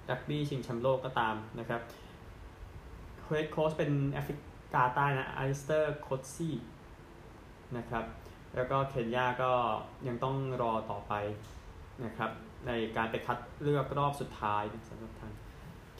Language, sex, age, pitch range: Thai, male, 20-39, 110-135 Hz